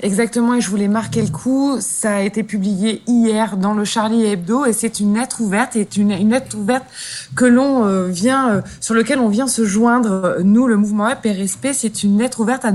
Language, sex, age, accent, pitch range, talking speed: French, female, 20-39, French, 195-235 Hz, 220 wpm